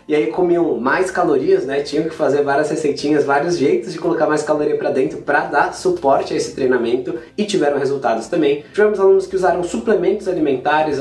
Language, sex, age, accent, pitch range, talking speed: Portuguese, male, 20-39, Brazilian, 145-210 Hz, 190 wpm